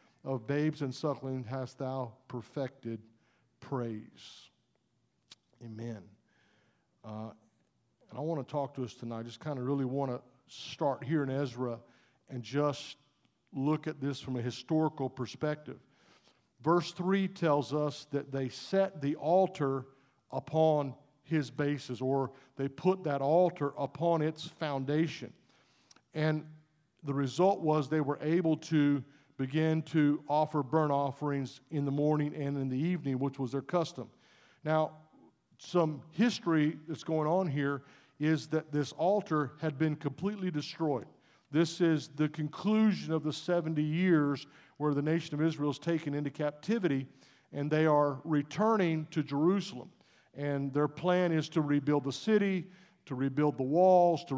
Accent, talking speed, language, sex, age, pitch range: American, 145 wpm, English, male, 50-69, 135-160 Hz